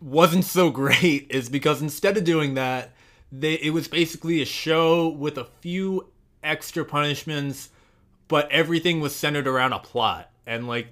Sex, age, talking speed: male, 20-39, 160 wpm